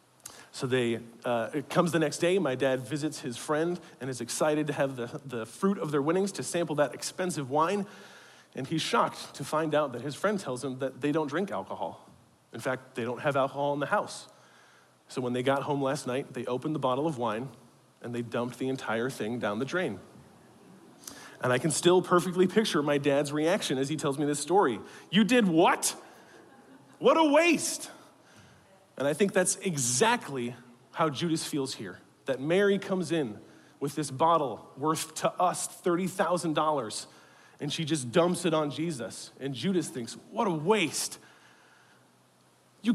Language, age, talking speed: English, 40-59, 185 wpm